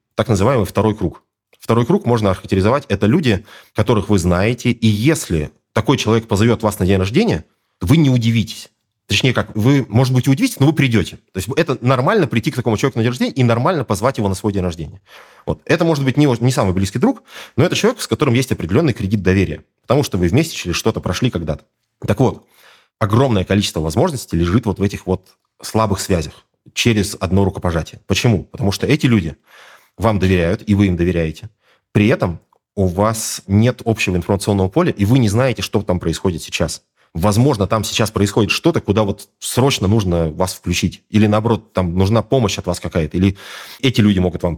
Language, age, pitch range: Russian, 30-49, 90-115 Hz